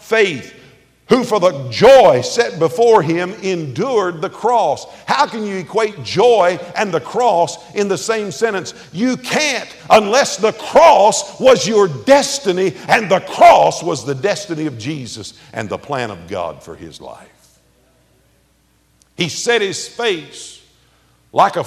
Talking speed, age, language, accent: 145 wpm, 50-69, English, American